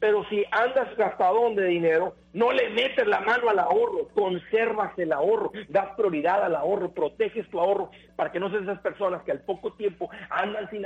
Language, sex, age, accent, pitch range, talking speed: Spanish, male, 50-69, Mexican, 150-190 Hz, 195 wpm